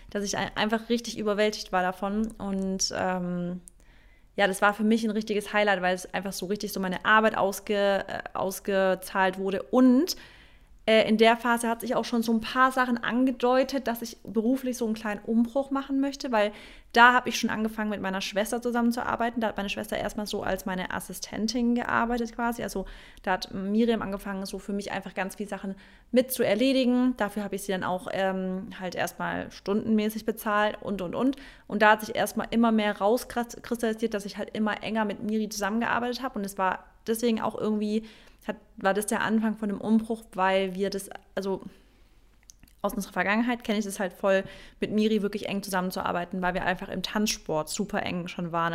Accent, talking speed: German, 195 wpm